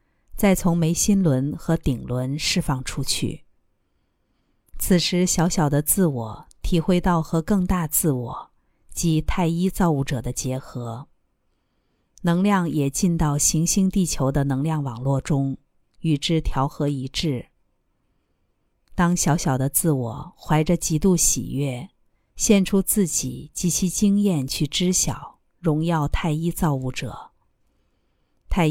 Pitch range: 135-175 Hz